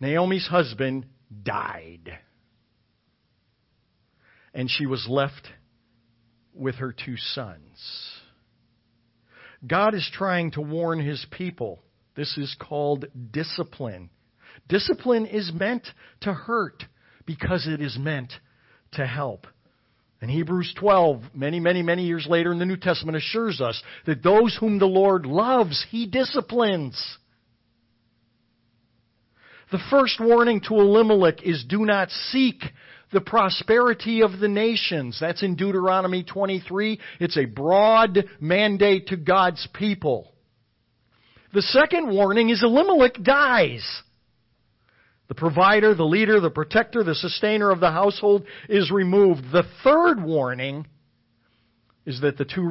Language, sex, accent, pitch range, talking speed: English, male, American, 120-195 Hz, 120 wpm